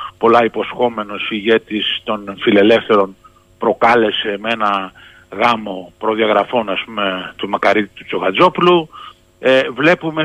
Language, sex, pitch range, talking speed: Greek, male, 110-140 Hz, 100 wpm